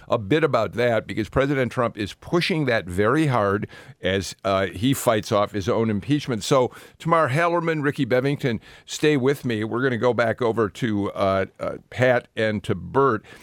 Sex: male